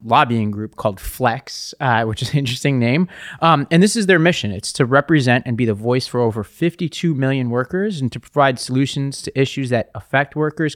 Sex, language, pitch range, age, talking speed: male, English, 110-140 Hz, 30-49, 205 wpm